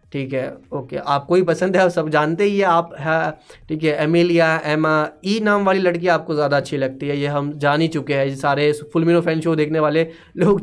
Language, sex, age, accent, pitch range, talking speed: Hindi, male, 20-39, native, 150-195 Hz, 235 wpm